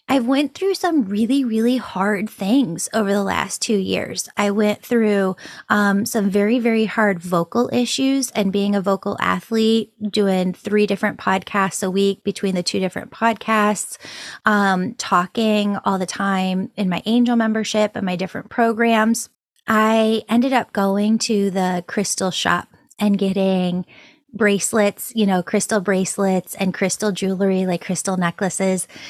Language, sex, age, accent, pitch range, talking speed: English, female, 20-39, American, 190-225 Hz, 150 wpm